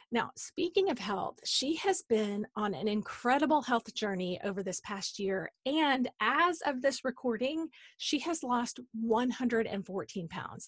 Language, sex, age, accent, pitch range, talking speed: English, female, 30-49, American, 205-275 Hz, 145 wpm